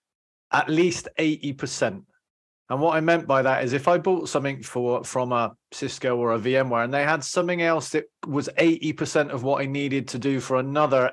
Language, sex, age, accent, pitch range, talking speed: English, male, 30-49, British, 130-155 Hz, 200 wpm